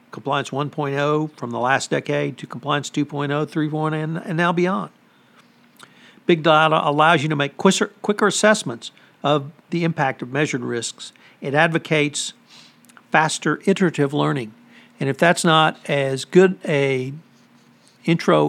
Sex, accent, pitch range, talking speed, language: male, American, 135-170 Hz, 135 wpm, English